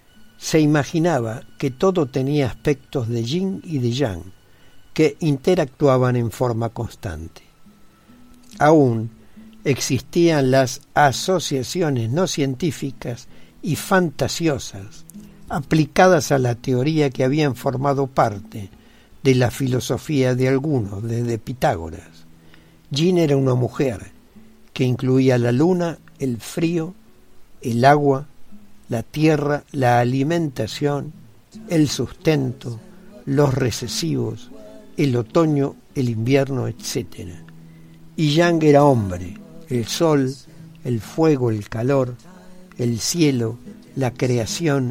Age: 60-79